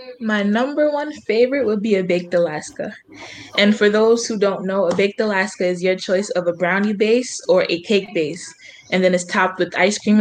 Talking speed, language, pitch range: 210 wpm, English, 175-210 Hz